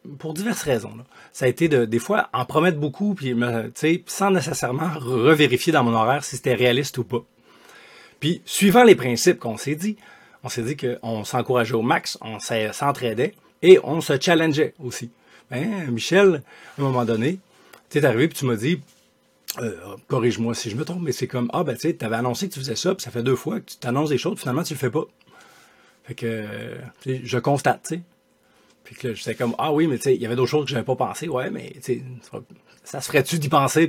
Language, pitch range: French, 120-160 Hz